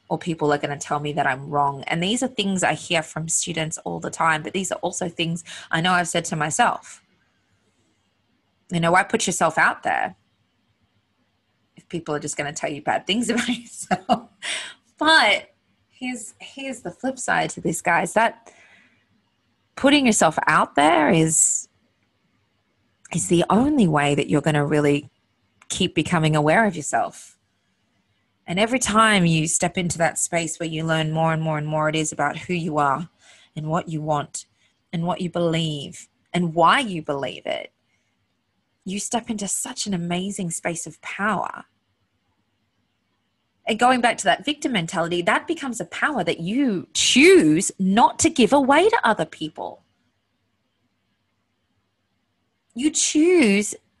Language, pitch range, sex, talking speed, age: English, 140-200 Hz, female, 165 wpm, 20-39